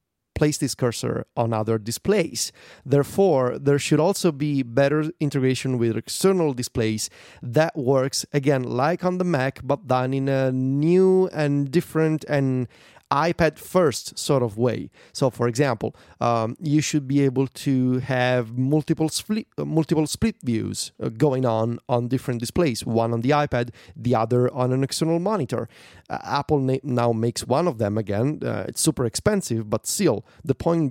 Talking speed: 155 wpm